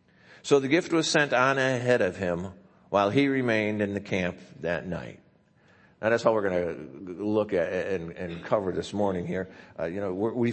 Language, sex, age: English, male, 50-69